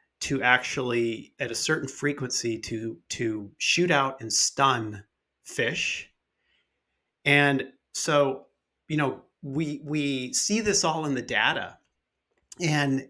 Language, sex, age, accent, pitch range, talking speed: English, male, 30-49, American, 115-140 Hz, 120 wpm